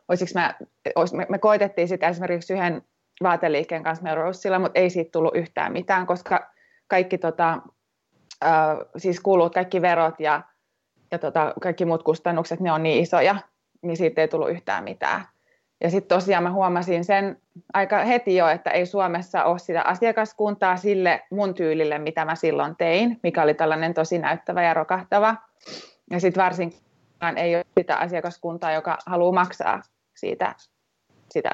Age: 20-39